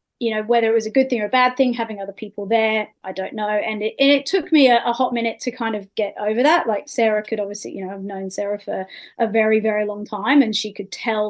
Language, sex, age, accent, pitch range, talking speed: English, female, 30-49, Australian, 205-245 Hz, 285 wpm